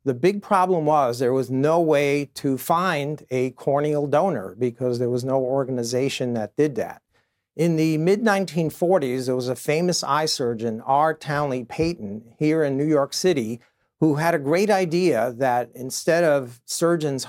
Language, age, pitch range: English, 50-69, 130-160 Hz